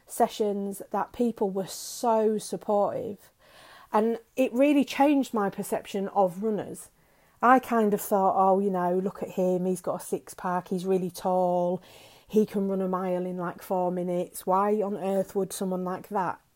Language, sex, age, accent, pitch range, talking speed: English, female, 40-59, British, 190-235 Hz, 175 wpm